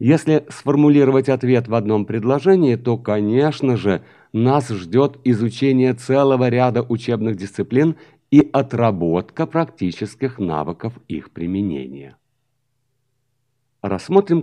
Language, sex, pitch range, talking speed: Russian, male, 110-145 Hz, 95 wpm